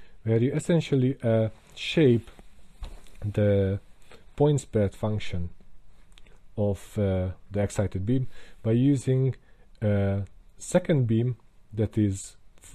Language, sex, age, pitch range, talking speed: English, male, 40-59, 100-125 Hz, 105 wpm